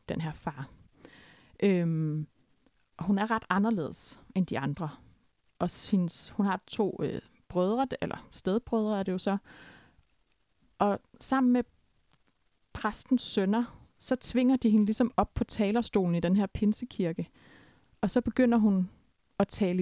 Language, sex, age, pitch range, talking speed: Danish, female, 30-49, 185-225 Hz, 140 wpm